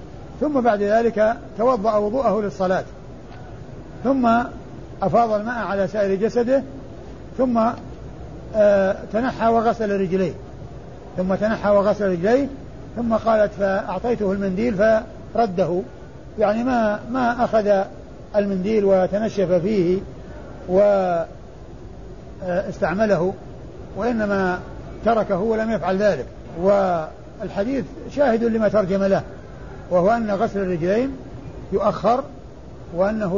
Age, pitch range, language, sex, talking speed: 60-79, 190-230 Hz, Arabic, male, 95 wpm